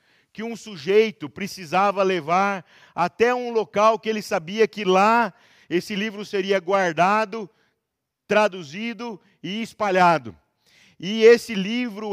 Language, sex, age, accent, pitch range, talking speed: Portuguese, male, 50-69, Brazilian, 160-210 Hz, 115 wpm